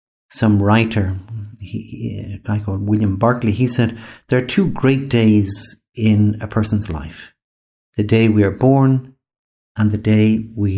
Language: English